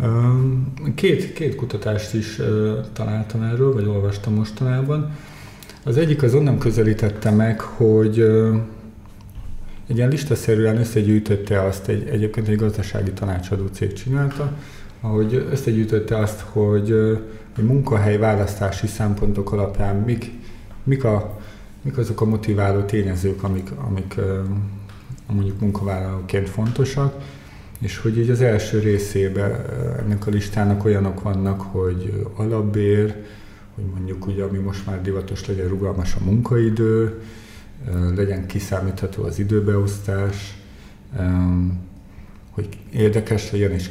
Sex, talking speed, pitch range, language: male, 110 wpm, 100-110 Hz, Hungarian